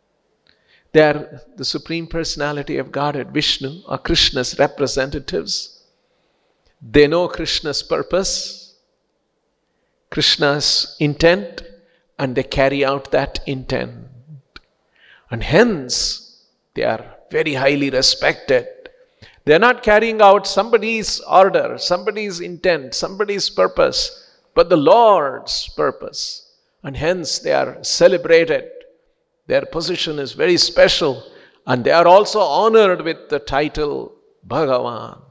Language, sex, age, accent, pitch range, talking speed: English, male, 50-69, Indian, 140-205 Hz, 110 wpm